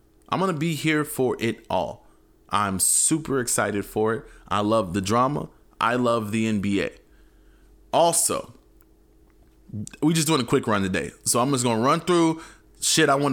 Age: 20-39